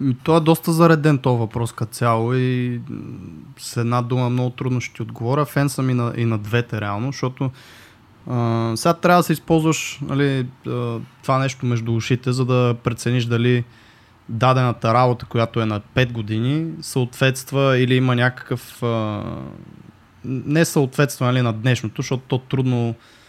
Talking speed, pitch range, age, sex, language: 150 wpm, 115-135 Hz, 20-39, male, Bulgarian